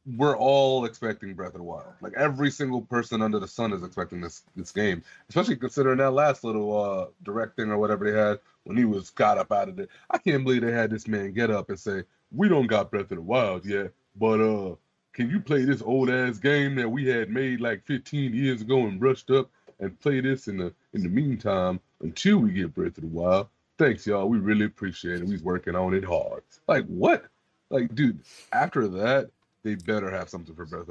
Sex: male